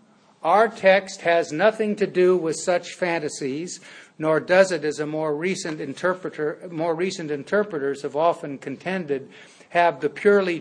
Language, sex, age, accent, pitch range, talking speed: English, male, 60-79, American, 150-185 Hz, 145 wpm